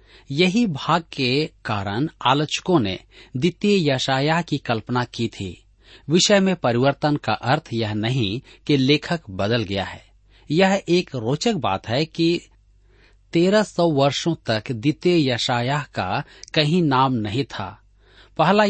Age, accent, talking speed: 40-59, native, 130 wpm